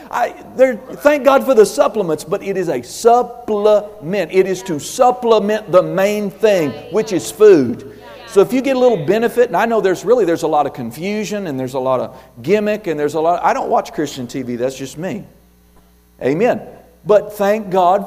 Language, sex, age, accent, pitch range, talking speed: English, male, 50-69, American, 130-205 Hz, 205 wpm